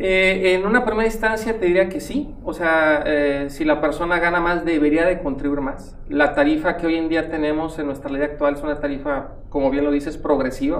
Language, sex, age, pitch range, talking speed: Spanish, male, 40-59, 145-190 Hz, 220 wpm